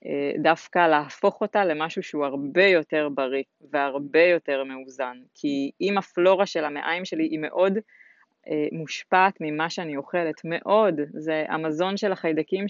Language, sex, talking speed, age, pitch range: Hebrew, female, 135 wpm, 20-39, 155-200 Hz